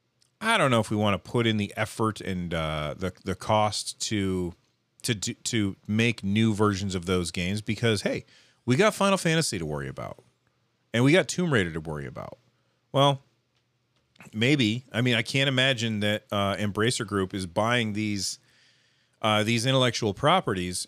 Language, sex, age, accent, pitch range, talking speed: English, male, 30-49, American, 105-130 Hz, 170 wpm